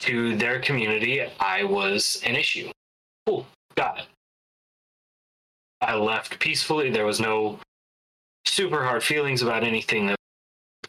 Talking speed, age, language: 125 wpm, 20-39, English